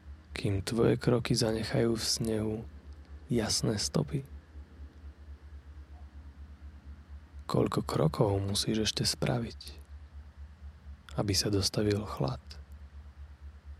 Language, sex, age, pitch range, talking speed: Slovak, male, 30-49, 75-100 Hz, 75 wpm